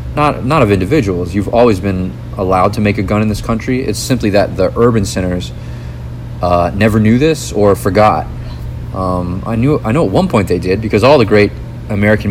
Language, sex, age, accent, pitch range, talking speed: English, male, 30-49, American, 95-115 Hz, 205 wpm